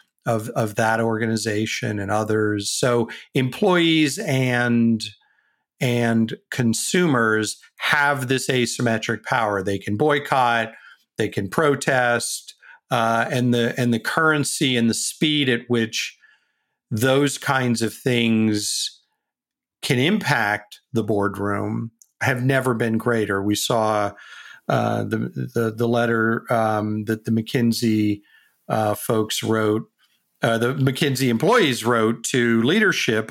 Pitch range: 105-125 Hz